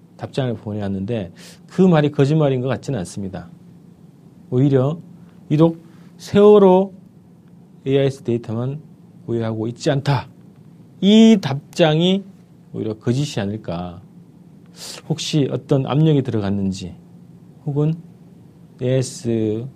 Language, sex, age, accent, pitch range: Korean, male, 40-59, native, 120-175 Hz